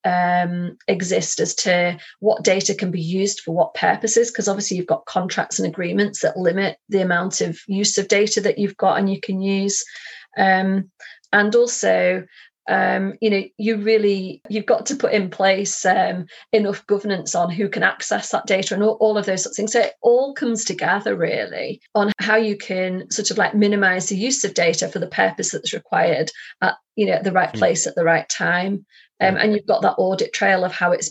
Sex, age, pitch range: female, 30-49, 180-215 Hz